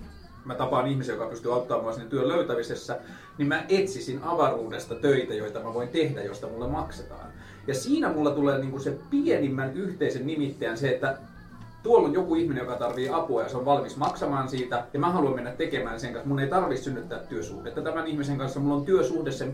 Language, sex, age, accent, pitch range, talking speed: Finnish, male, 30-49, native, 125-155 Hz, 200 wpm